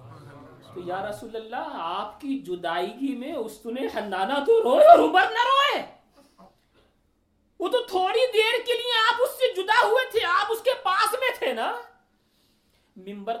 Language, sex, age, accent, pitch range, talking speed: English, male, 40-59, Indian, 175-230 Hz, 140 wpm